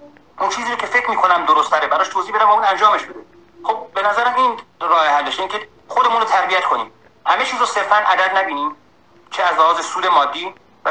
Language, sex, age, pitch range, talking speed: Persian, male, 40-59, 185-245 Hz, 210 wpm